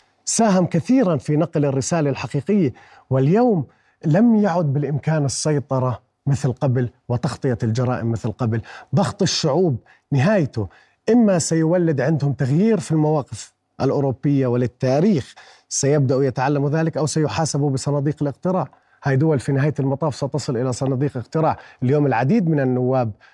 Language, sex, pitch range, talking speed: Arabic, male, 130-160 Hz, 125 wpm